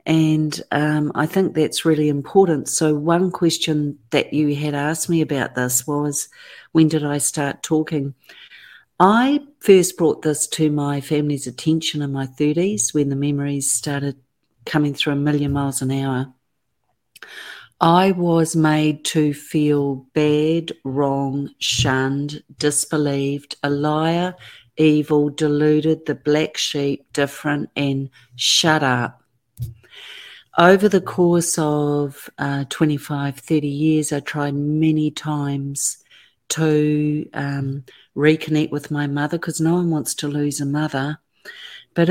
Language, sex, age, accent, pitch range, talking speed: English, female, 50-69, Australian, 145-160 Hz, 130 wpm